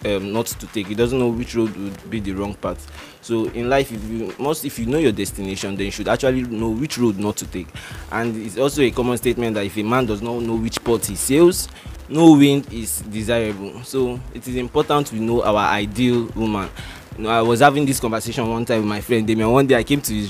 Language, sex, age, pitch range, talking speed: English, male, 20-39, 105-125 Hz, 250 wpm